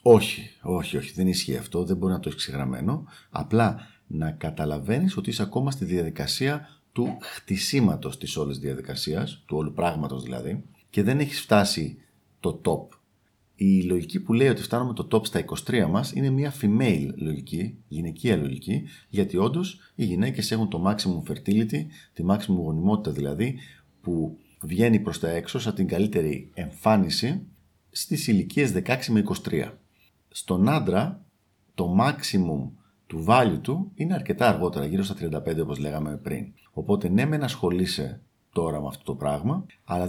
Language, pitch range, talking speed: Greek, 75-110 Hz, 155 wpm